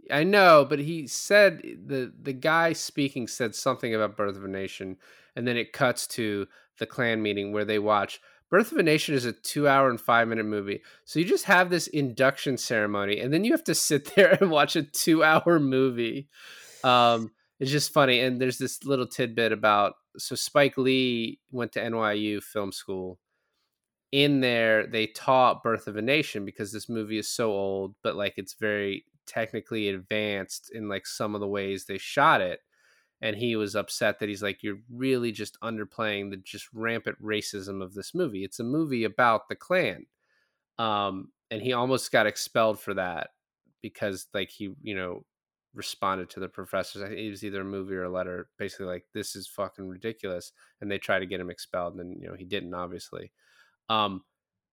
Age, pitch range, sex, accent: 20-39, 100-130 Hz, male, American